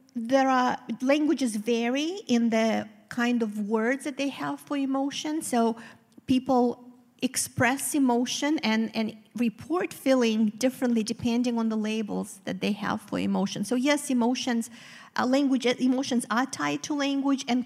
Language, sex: English, female